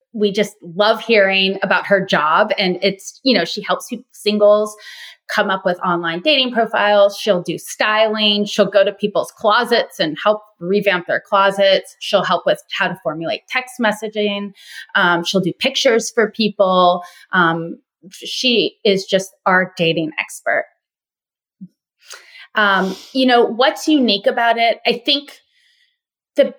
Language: English